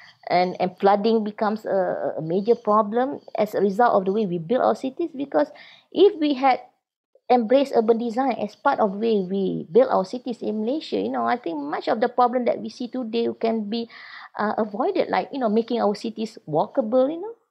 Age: 20-39